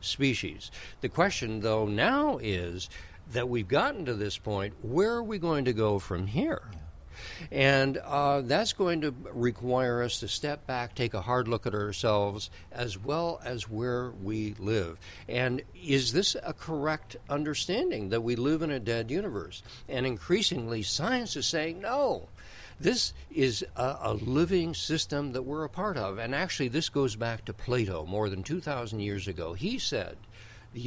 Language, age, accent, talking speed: English, 60-79, American, 170 wpm